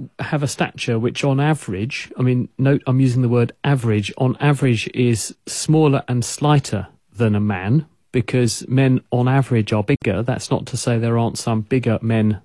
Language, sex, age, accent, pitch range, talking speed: English, male, 40-59, British, 110-135 Hz, 185 wpm